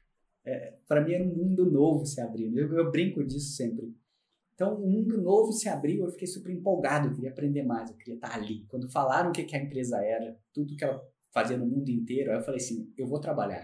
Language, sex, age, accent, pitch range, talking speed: Portuguese, male, 20-39, Brazilian, 125-175 Hz, 240 wpm